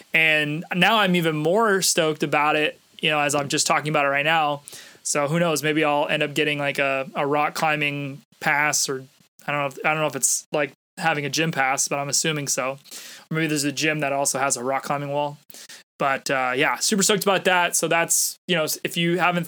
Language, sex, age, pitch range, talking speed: English, male, 20-39, 145-170 Hz, 230 wpm